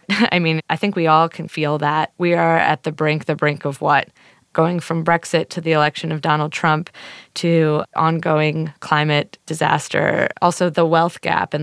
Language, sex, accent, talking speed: English, female, American, 185 wpm